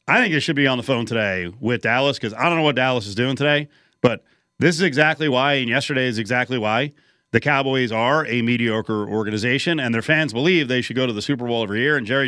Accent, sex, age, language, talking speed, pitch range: American, male, 40-59, English, 250 wpm, 125-200 Hz